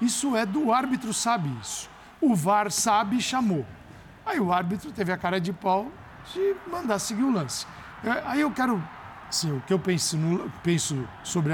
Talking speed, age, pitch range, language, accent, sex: 180 wpm, 60-79, 155-220 Hz, Portuguese, Brazilian, male